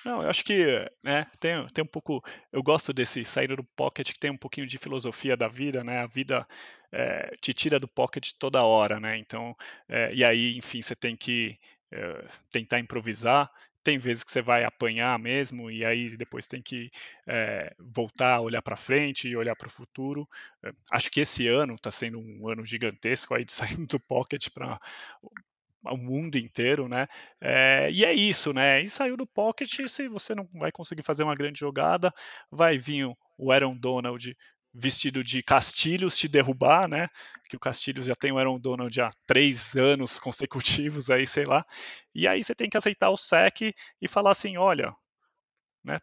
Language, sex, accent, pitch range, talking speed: Portuguese, male, Brazilian, 120-150 Hz, 190 wpm